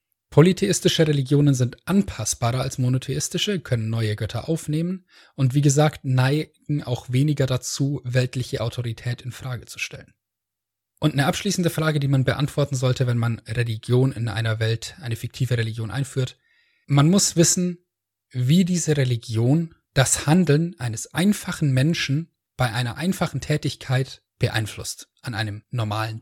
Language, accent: German, German